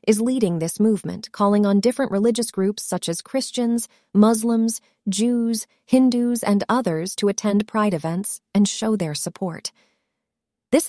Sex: female